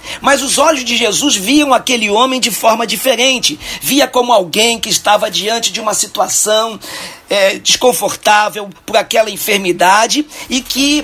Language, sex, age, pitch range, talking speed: Portuguese, male, 50-69, 210-270 Hz, 140 wpm